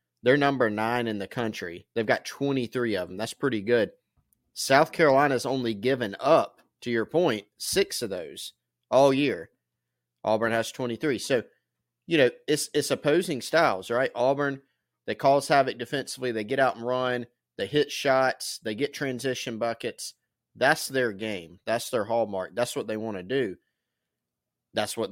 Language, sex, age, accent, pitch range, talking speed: English, male, 30-49, American, 110-130 Hz, 165 wpm